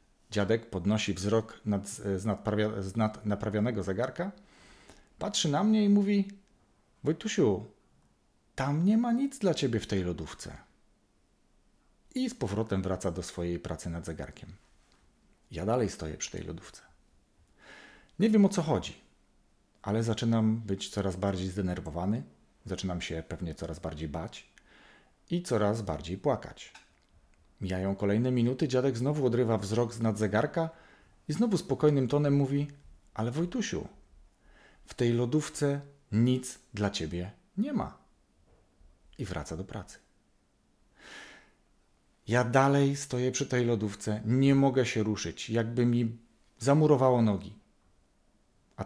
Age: 40-59